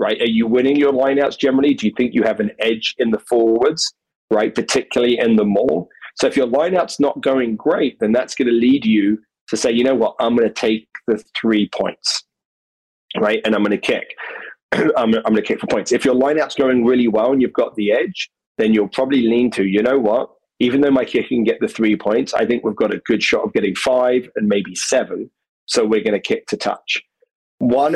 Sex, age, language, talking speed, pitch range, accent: male, 30-49, English, 230 wpm, 110-140 Hz, British